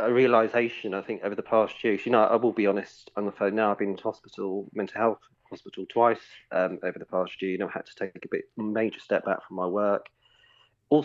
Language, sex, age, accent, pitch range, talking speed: English, male, 30-49, British, 100-120 Hz, 250 wpm